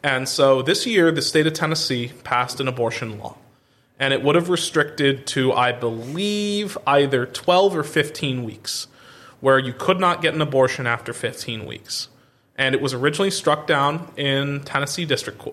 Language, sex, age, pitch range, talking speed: English, male, 30-49, 125-155 Hz, 170 wpm